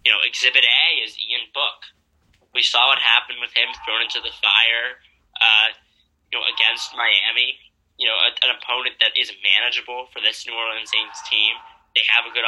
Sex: male